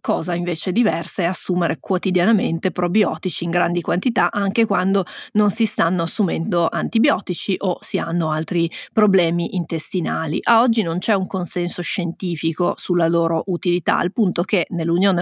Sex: female